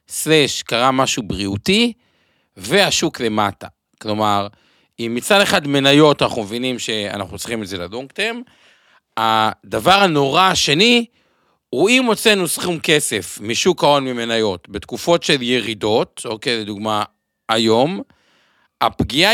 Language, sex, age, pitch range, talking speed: Hebrew, male, 50-69, 115-190 Hz, 115 wpm